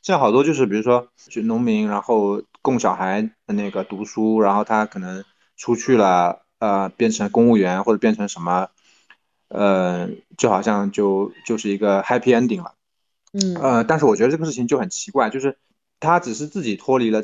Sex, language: male, Chinese